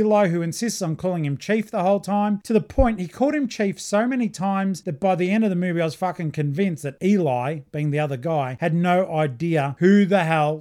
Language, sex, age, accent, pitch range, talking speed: English, male, 30-49, Australian, 150-205 Hz, 245 wpm